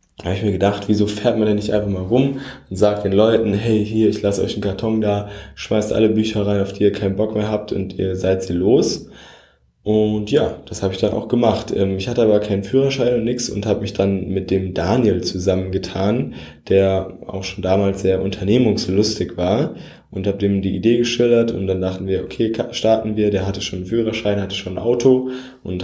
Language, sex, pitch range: German, male, 95-110 Hz